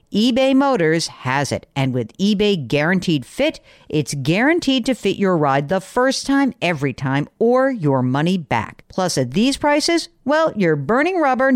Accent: American